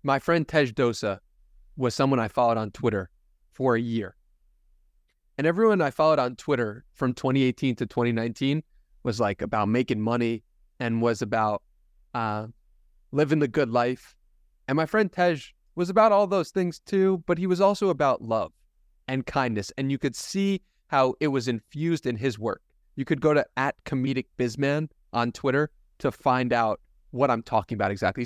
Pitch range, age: 115-145 Hz, 30-49